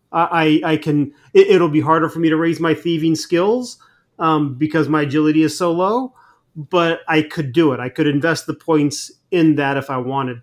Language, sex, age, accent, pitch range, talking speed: English, male, 30-49, American, 135-160 Hz, 200 wpm